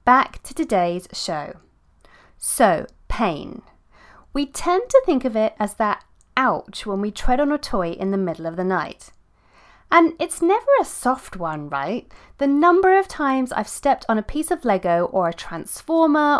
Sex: female